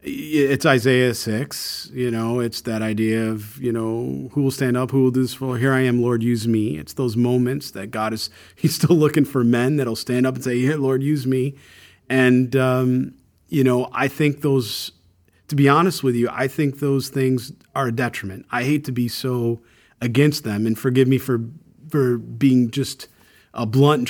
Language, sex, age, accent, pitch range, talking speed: English, male, 40-59, American, 115-140 Hz, 205 wpm